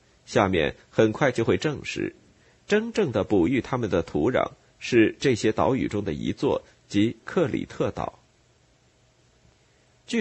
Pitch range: 110-170 Hz